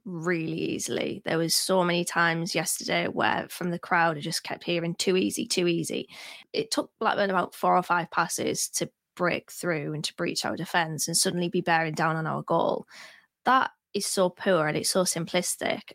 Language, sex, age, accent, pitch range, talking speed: English, female, 20-39, British, 170-200 Hz, 195 wpm